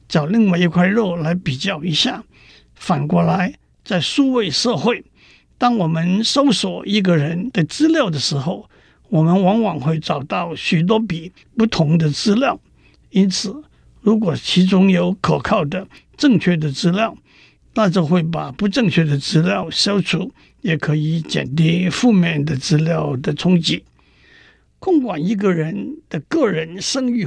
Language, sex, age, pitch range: Chinese, male, 60-79, 165-220 Hz